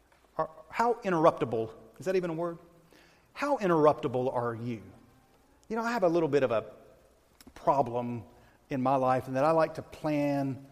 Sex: male